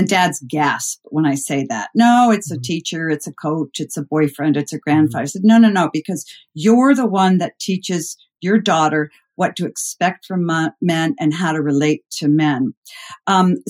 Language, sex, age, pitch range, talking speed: English, female, 50-69, 165-235 Hz, 200 wpm